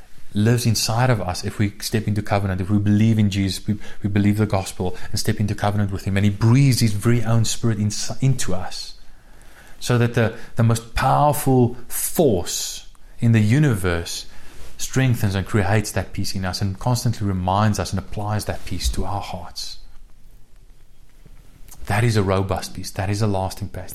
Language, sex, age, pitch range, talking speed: English, male, 30-49, 100-115 Hz, 185 wpm